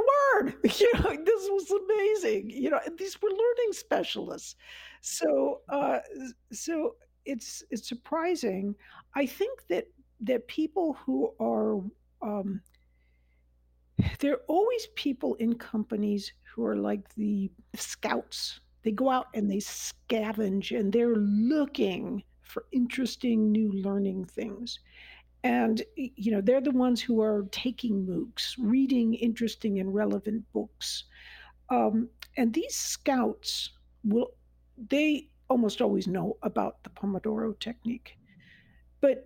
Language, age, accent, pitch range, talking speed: English, 60-79, American, 205-260 Hz, 120 wpm